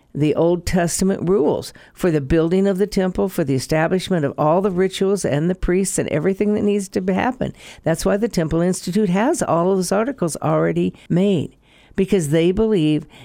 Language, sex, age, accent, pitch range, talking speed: English, female, 60-79, American, 145-195 Hz, 185 wpm